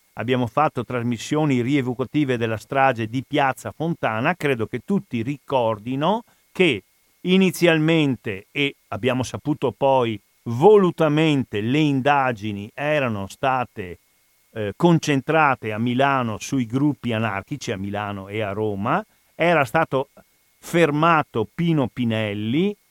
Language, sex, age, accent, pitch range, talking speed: Italian, male, 50-69, native, 115-155 Hz, 105 wpm